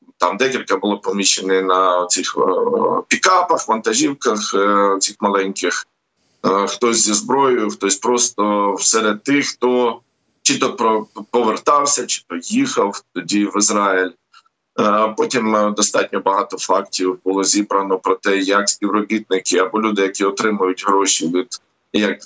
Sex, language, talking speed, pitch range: male, Ukrainian, 120 wpm, 95-110 Hz